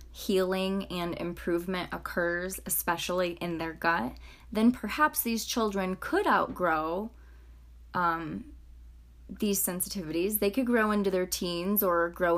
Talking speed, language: 120 wpm, English